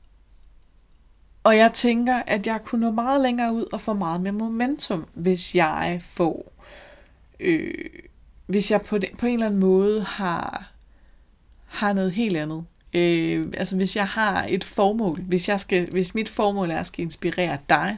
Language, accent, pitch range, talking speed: Danish, native, 165-210 Hz, 175 wpm